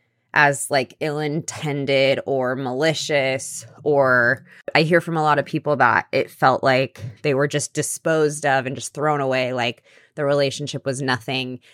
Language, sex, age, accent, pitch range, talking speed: English, female, 20-39, American, 130-155 Hz, 160 wpm